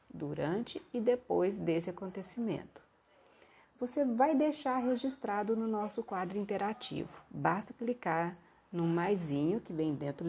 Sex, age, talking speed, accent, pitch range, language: female, 40-59, 115 wpm, Brazilian, 155-235 Hz, Portuguese